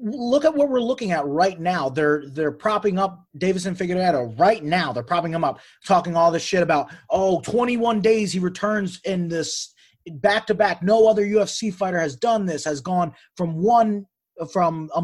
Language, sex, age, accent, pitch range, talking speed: English, male, 30-49, American, 155-215 Hz, 185 wpm